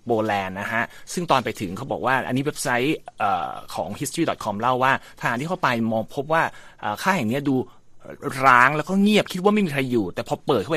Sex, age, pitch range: male, 30-49, 110-145 Hz